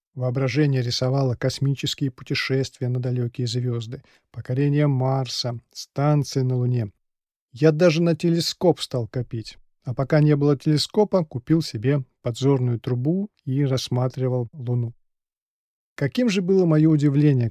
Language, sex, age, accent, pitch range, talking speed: Russian, male, 40-59, native, 125-160 Hz, 120 wpm